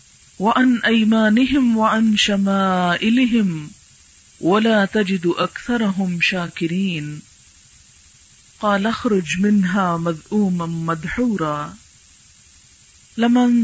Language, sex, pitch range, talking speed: Urdu, female, 180-225 Hz, 60 wpm